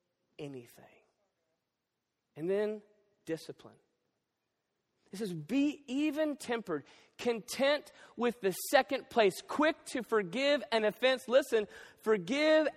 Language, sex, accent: English, male, American